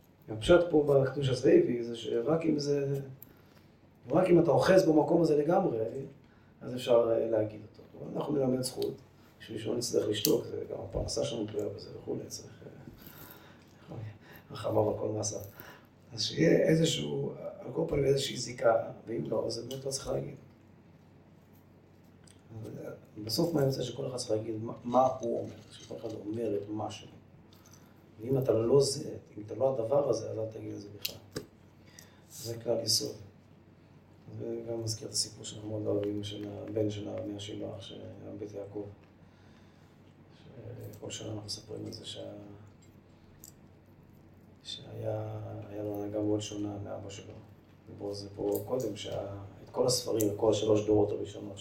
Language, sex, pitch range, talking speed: Hebrew, male, 105-125 Hz, 145 wpm